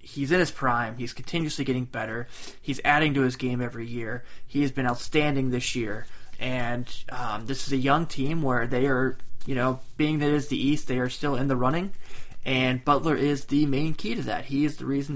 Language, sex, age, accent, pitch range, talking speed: English, male, 20-39, American, 125-140 Hz, 225 wpm